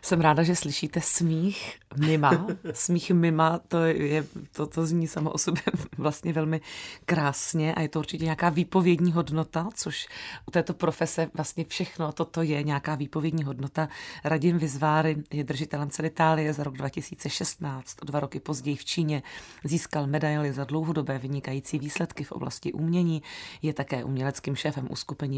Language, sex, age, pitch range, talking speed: Czech, female, 30-49, 140-165 Hz, 155 wpm